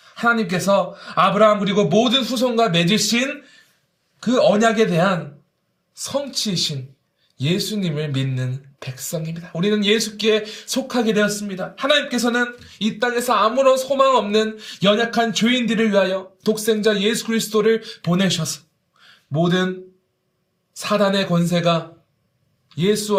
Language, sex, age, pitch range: Korean, male, 20-39, 165-220 Hz